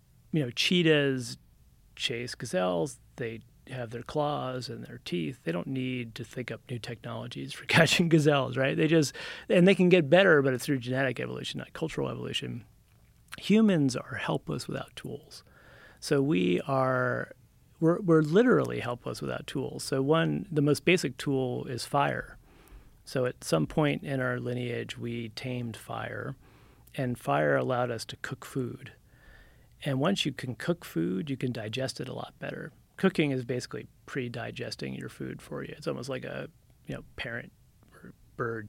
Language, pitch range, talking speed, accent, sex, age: English, 115-150 Hz, 160 wpm, American, male, 30-49